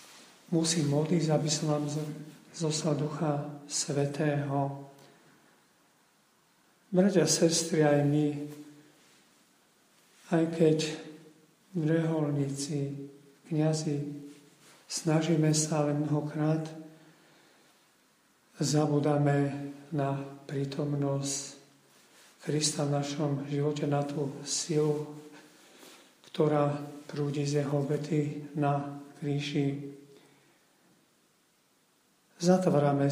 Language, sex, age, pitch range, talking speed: Slovak, male, 40-59, 140-155 Hz, 70 wpm